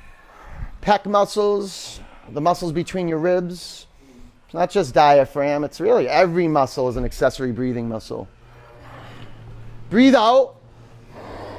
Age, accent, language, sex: 30-49, American, English, male